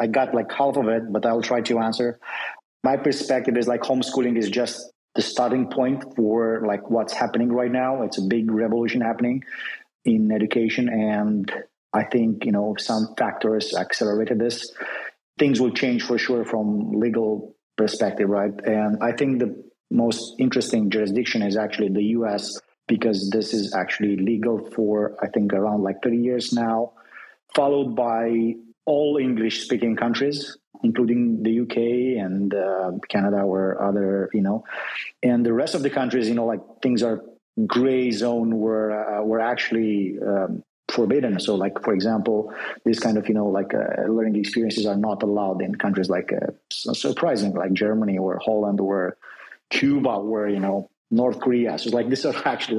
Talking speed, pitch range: 170 wpm, 105-120 Hz